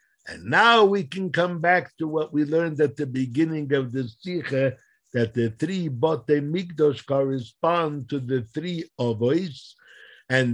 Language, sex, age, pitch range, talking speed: English, male, 60-79, 110-160 Hz, 150 wpm